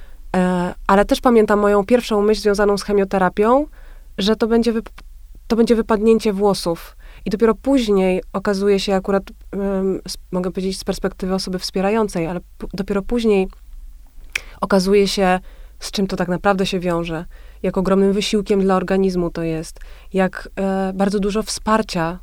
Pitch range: 180-200 Hz